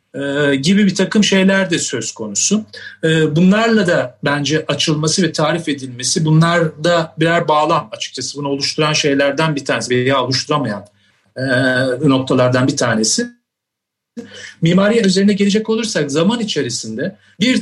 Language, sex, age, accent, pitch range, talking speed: Turkish, male, 40-59, native, 135-180 Hz, 125 wpm